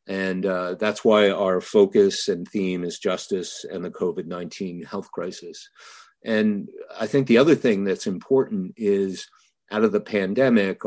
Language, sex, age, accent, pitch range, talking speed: English, male, 50-69, American, 95-115 Hz, 155 wpm